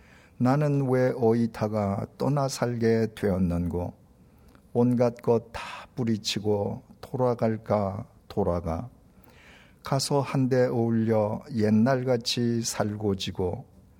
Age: 50-69